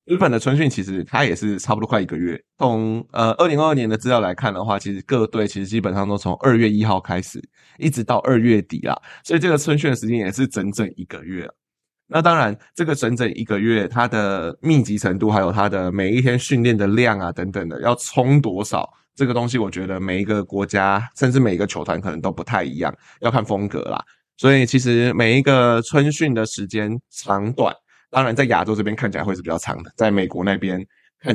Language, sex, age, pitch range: Chinese, male, 20-39, 100-125 Hz